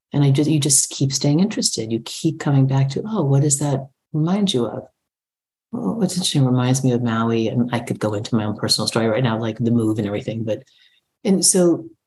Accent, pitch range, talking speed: American, 135-190 Hz, 230 wpm